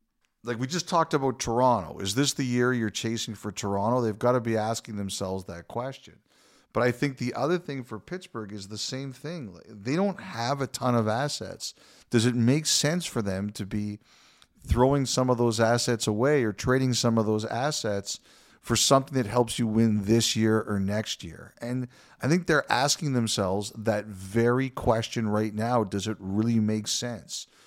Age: 50-69